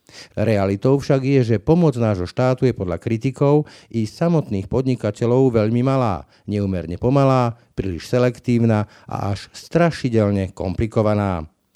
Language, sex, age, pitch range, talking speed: Slovak, male, 50-69, 100-130 Hz, 115 wpm